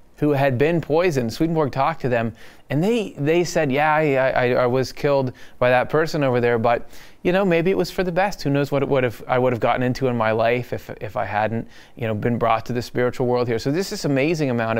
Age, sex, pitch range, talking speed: 20-39, male, 120-145 Hz, 265 wpm